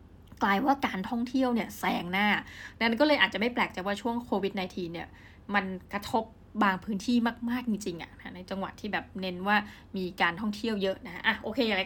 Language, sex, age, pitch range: Thai, female, 20-39, 185-225 Hz